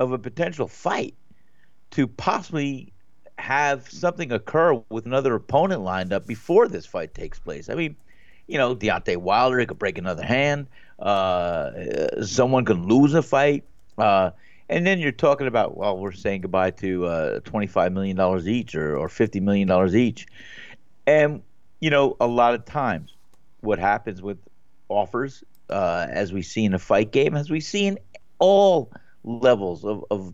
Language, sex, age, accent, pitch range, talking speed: English, male, 50-69, American, 100-145 Hz, 160 wpm